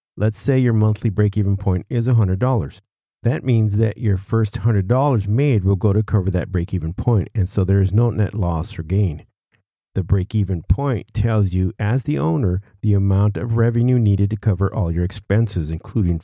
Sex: male